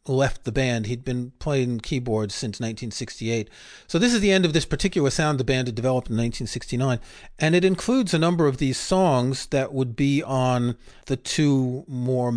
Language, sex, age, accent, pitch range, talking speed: English, male, 40-59, American, 120-150 Hz, 190 wpm